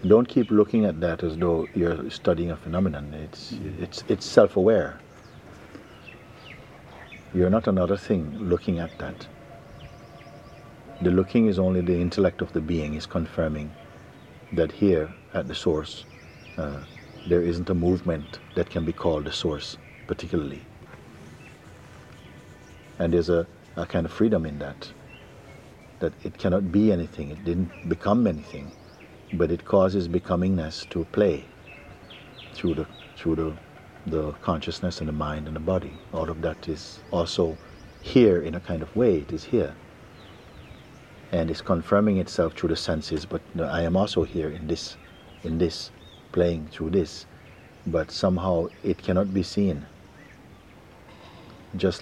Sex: male